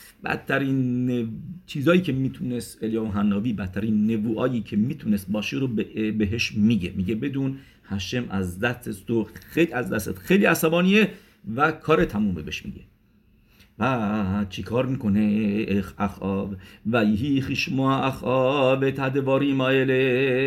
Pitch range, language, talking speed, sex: 105-135 Hz, English, 125 wpm, male